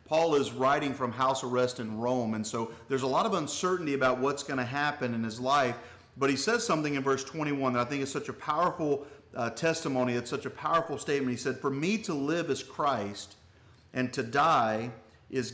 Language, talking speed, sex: English, 210 wpm, male